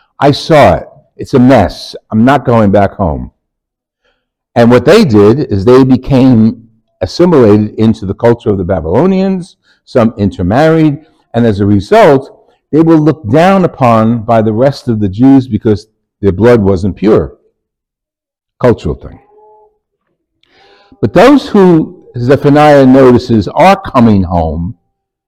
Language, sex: English, male